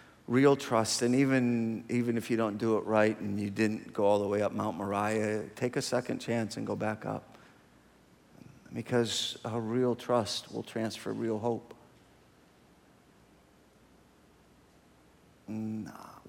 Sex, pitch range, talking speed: male, 110-165 Hz, 140 wpm